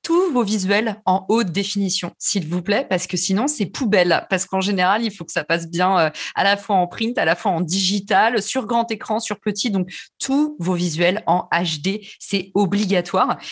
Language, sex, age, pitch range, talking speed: French, female, 30-49, 185-230 Hz, 205 wpm